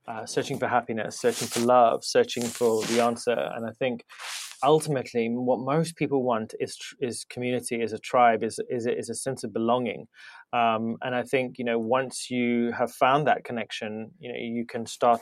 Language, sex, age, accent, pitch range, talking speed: English, male, 20-39, British, 120-135 Hz, 190 wpm